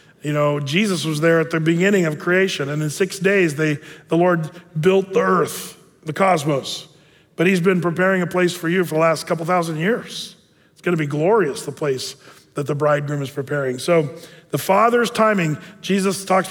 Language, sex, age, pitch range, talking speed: English, male, 40-59, 160-195 Hz, 195 wpm